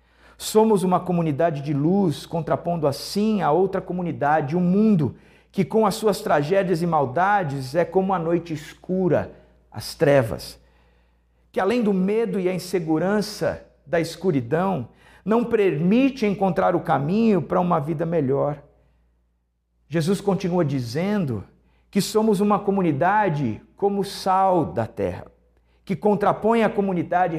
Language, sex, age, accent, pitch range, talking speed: Portuguese, male, 50-69, Brazilian, 155-205 Hz, 130 wpm